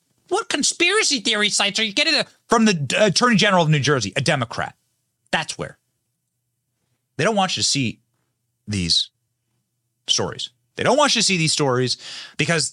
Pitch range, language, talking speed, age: 120-190 Hz, English, 165 wpm, 30-49